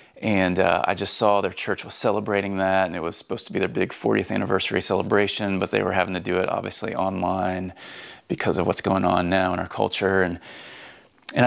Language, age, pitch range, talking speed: English, 30-49, 95-110 Hz, 215 wpm